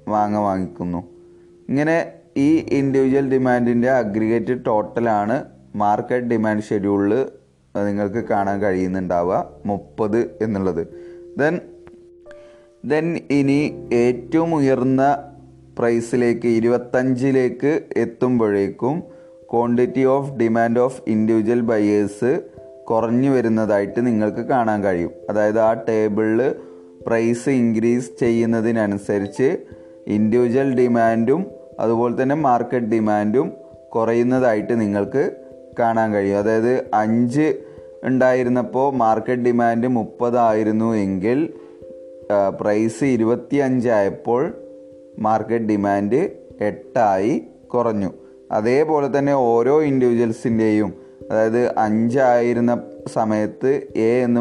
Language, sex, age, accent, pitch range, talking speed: Malayalam, male, 20-39, native, 105-125 Hz, 80 wpm